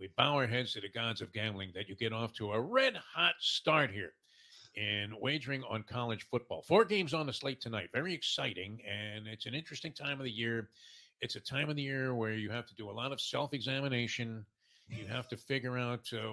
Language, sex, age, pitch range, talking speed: English, male, 50-69, 110-140 Hz, 220 wpm